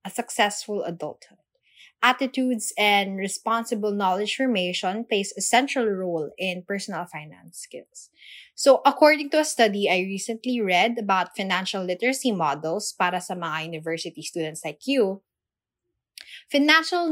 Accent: native